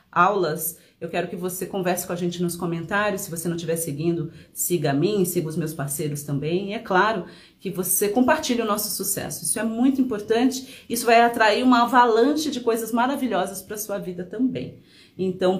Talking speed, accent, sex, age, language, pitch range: 190 wpm, Brazilian, female, 40-59, Portuguese, 180-235 Hz